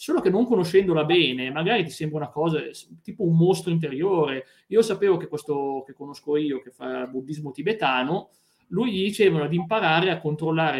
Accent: native